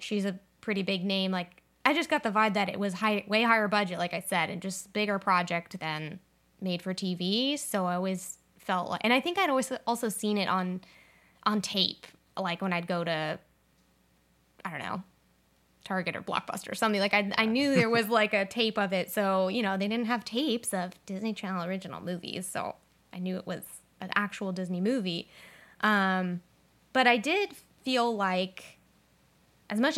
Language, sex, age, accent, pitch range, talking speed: English, female, 10-29, American, 185-225 Hz, 195 wpm